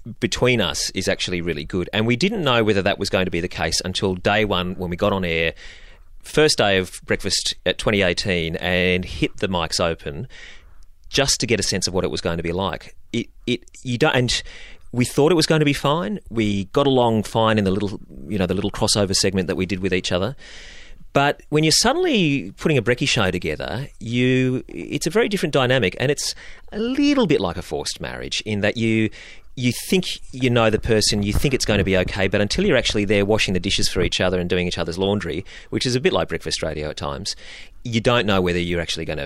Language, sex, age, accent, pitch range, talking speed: English, male, 30-49, Australian, 90-125 Hz, 235 wpm